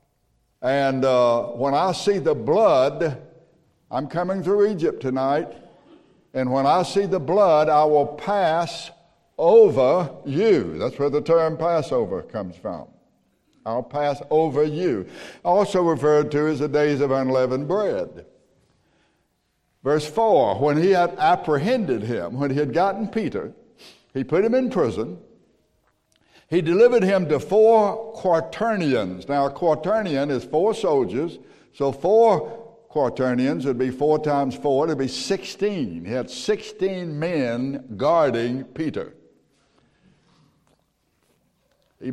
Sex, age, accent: male, 60-79, American